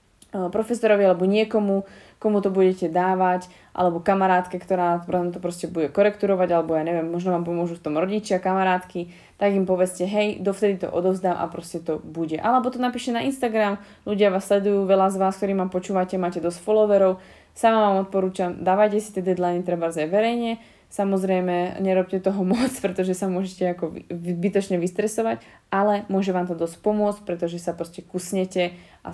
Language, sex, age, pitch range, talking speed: Slovak, female, 20-39, 175-200 Hz, 170 wpm